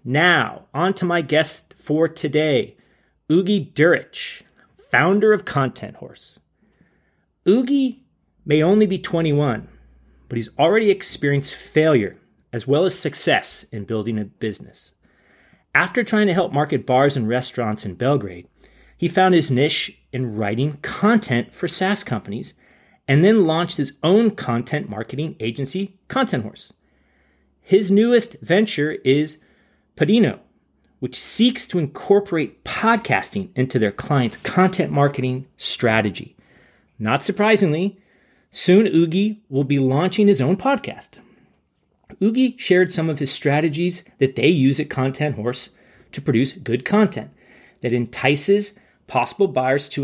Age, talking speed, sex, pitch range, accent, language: 30-49, 130 wpm, male, 130-195 Hz, American, English